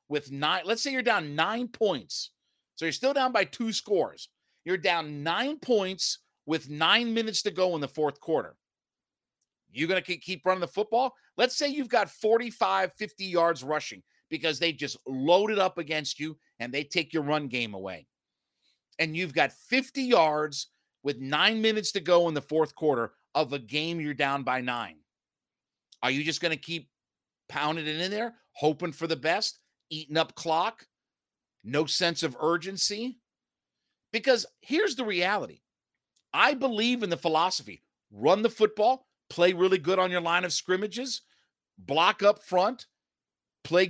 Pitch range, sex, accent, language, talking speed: 155-225 Hz, male, American, English, 170 wpm